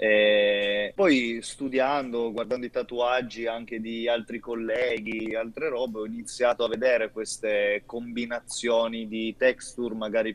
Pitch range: 110-120 Hz